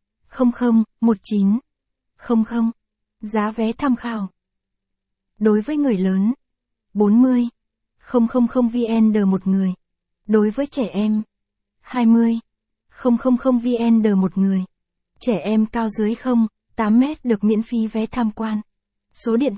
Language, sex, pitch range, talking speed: Vietnamese, female, 200-235 Hz, 125 wpm